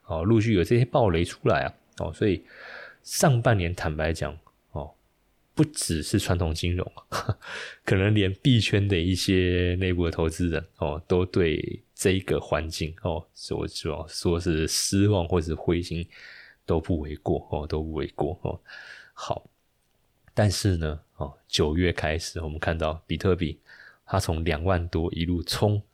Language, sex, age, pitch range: Chinese, male, 20-39, 80-105 Hz